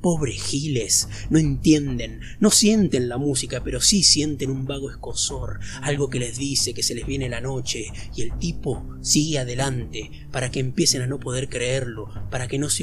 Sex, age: male, 30-49